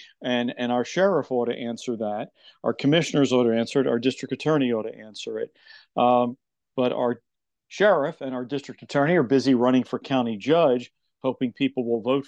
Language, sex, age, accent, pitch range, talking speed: English, male, 50-69, American, 130-160 Hz, 190 wpm